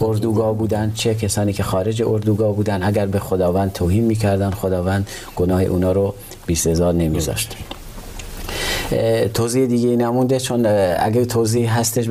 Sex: male